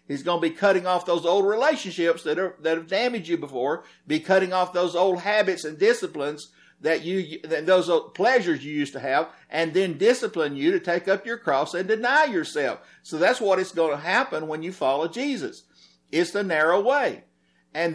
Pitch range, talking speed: 135-200 Hz, 205 wpm